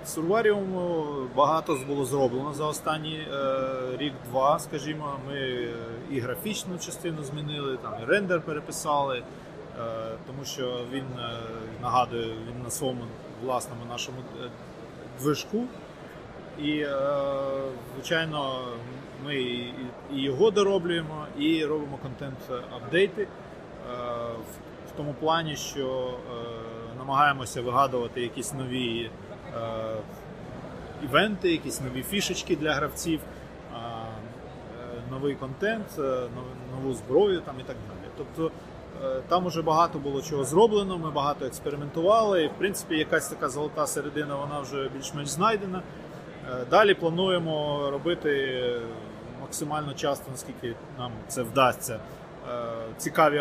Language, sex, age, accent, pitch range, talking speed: Ukrainian, male, 30-49, native, 125-160 Hz, 105 wpm